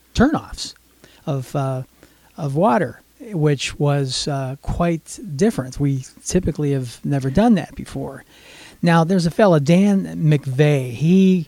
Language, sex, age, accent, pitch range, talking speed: English, male, 40-59, American, 135-175 Hz, 125 wpm